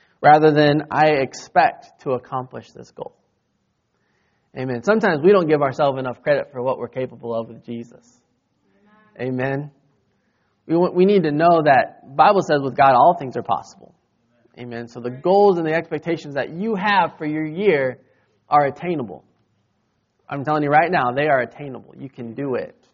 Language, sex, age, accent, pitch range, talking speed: English, male, 20-39, American, 125-165 Hz, 175 wpm